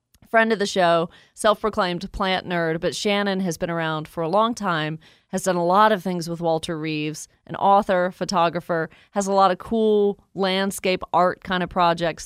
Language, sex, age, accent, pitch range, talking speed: English, female, 30-49, American, 160-195 Hz, 185 wpm